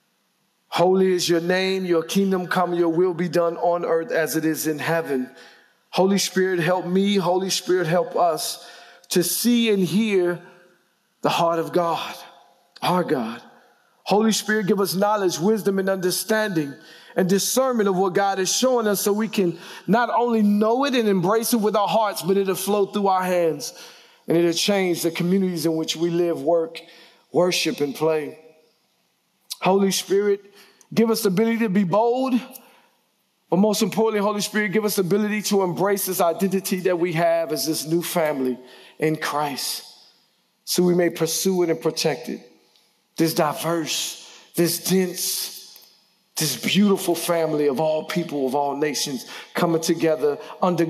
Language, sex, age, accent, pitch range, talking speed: English, male, 40-59, American, 165-205 Hz, 165 wpm